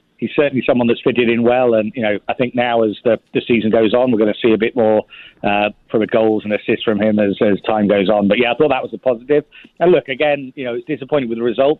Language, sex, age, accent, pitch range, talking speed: English, male, 40-59, British, 110-125 Hz, 290 wpm